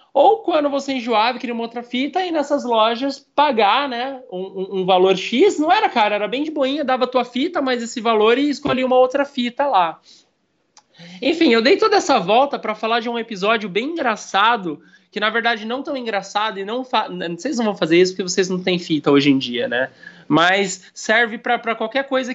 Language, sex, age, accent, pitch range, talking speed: Portuguese, male, 20-39, Brazilian, 175-255 Hz, 215 wpm